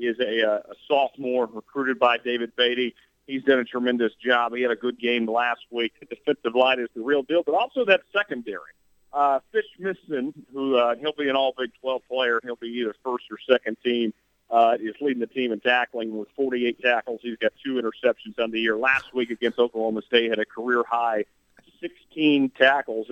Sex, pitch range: male, 115-140 Hz